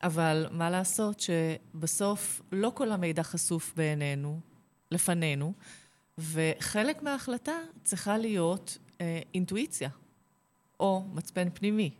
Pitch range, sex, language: 155-210 Hz, female, Hebrew